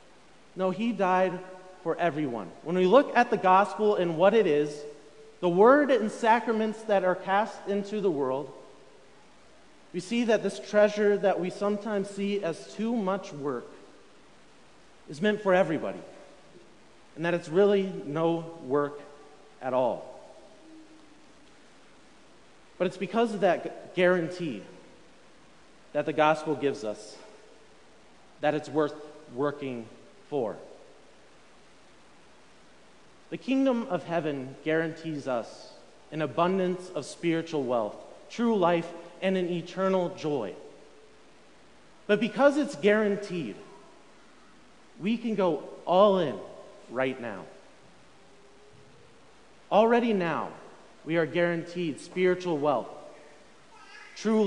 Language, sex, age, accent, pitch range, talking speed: English, male, 40-59, American, 160-215 Hz, 110 wpm